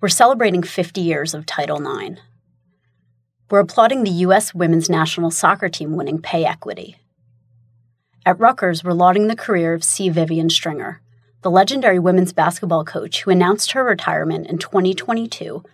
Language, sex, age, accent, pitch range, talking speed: English, female, 30-49, American, 145-195 Hz, 150 wpm